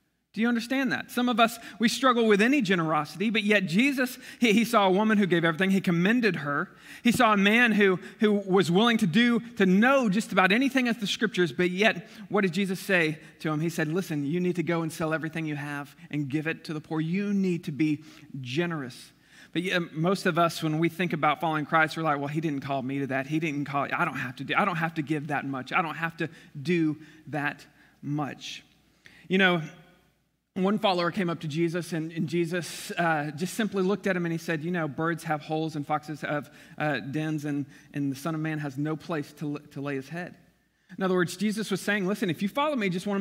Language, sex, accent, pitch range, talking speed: English, male, American, 155-195 Hz, 240 wpm